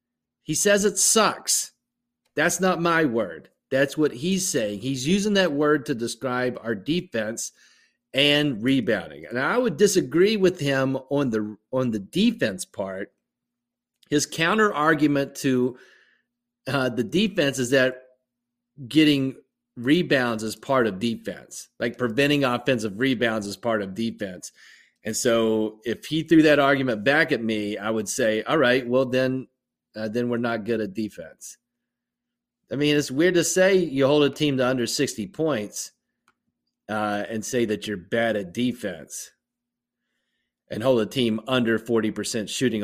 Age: 40-59